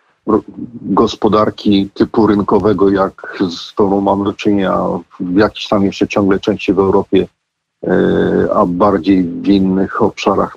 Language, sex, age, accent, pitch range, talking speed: Polish, male, 50-69, native, 100-125 Hz, 125 wpm